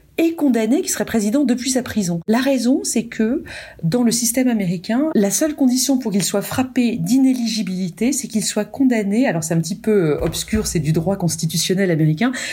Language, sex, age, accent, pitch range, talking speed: French, female, 40-59, French, 185-260 Hz, 185 wpm